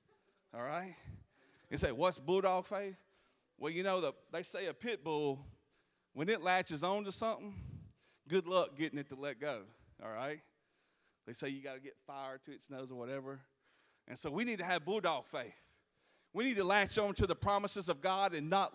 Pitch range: 145-230 Hz